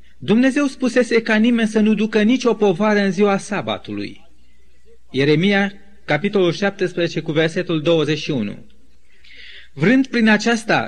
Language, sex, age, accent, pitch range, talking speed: Romanian, male, 30-49, native, 170-215 Hz, 115 wpm